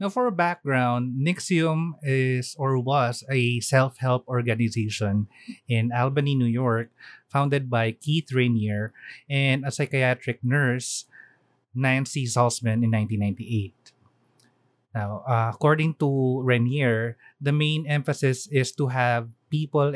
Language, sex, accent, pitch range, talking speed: Filipino, male, native, 115-145 Hz, 115 wpm